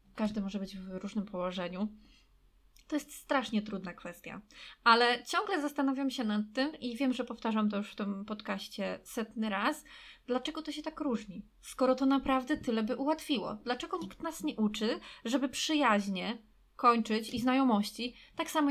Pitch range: 210-265 Hz